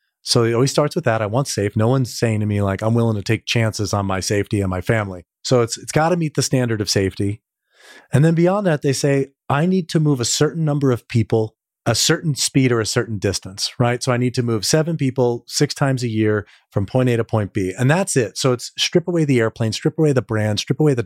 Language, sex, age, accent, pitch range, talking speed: English, male, 30-49, American, 105-135 Hz, 260 wpm